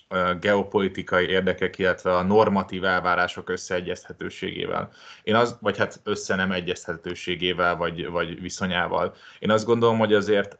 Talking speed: 120 wpm